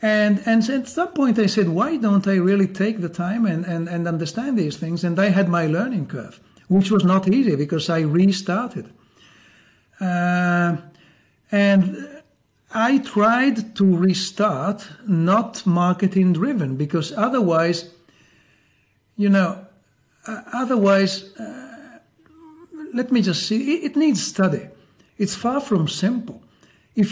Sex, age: male, 60-79